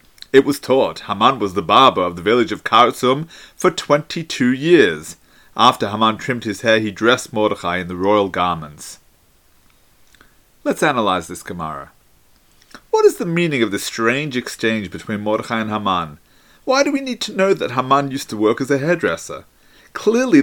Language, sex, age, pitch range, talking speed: English, male, 30-49, 105-145 Hz, 170 wpm